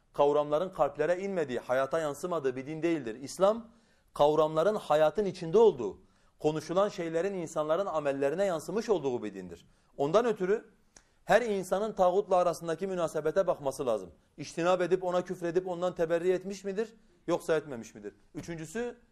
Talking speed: 130 wpm